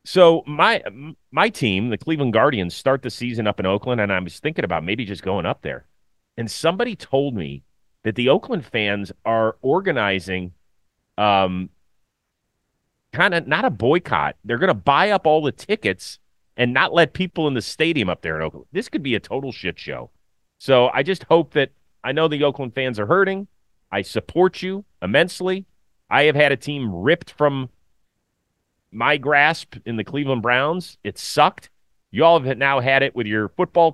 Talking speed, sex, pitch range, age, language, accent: 185 wpm, male, 105-145 Hz, 30-49, English, American